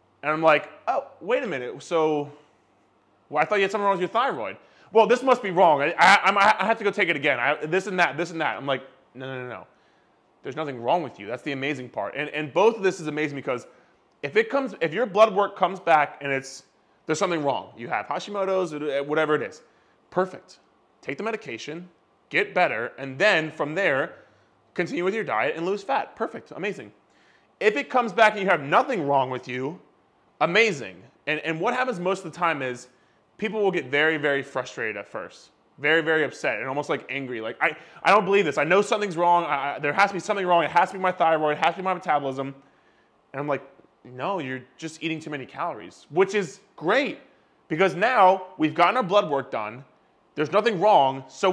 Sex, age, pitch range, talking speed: male, 20-39, 140-200 Hz, 225 wpm